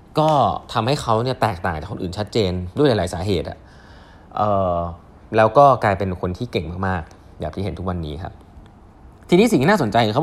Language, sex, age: Thai, male, 20-39